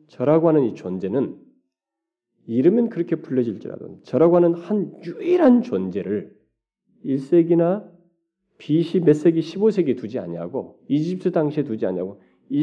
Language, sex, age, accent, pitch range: Korean, male, 40-59, native, 150-230 Hz